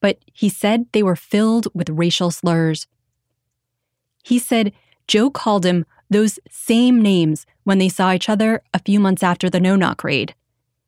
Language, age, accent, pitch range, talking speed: English, 20-39, American, 165-210 Hz, 160 wpm